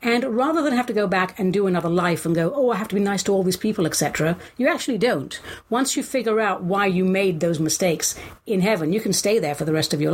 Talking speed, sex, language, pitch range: 280 wpm, female, English, 175-235 Hz